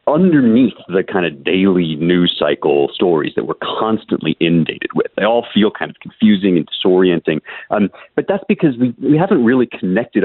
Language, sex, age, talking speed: English, male, 40-59, 175 wpm